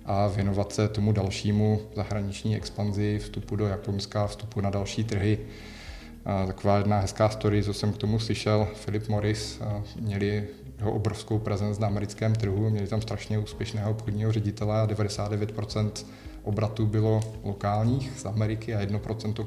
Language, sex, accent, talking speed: Czech, male, native, 145 wpm